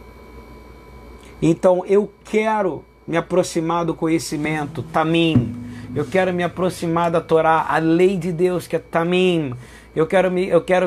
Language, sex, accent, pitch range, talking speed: Portuguese, male, Brazilian, 165-185 Hz, 135 wpm